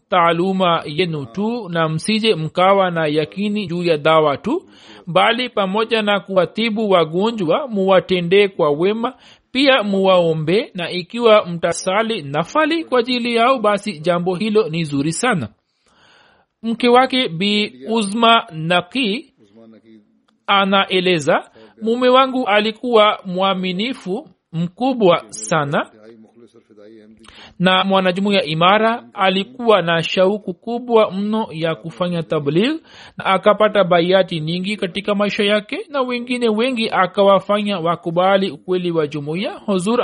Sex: male